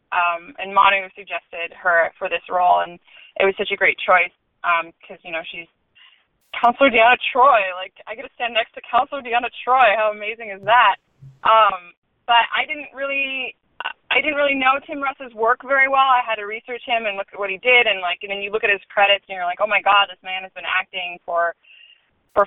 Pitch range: 175-225 Hz